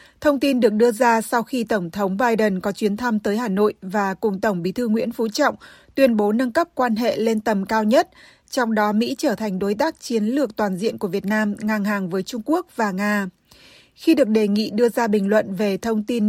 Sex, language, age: female, Vietnamese, 20-39